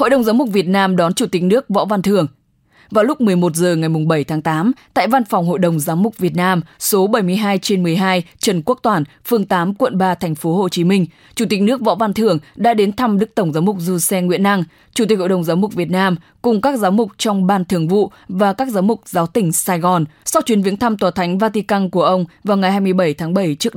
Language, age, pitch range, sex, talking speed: English, 20-39, 175-220 Hz, female, 255 wpm